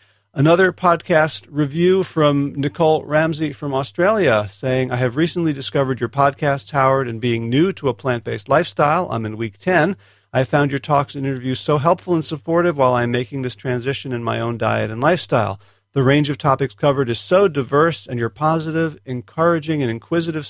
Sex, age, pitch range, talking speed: male, 40-59, 115-155 Hz, 180 wpm